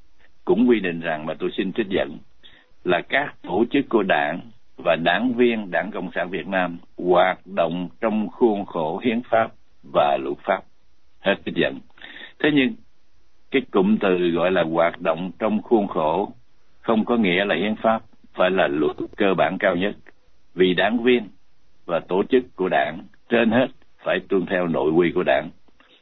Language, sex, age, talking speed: Vietnamese, male, 60-79, 180 wpm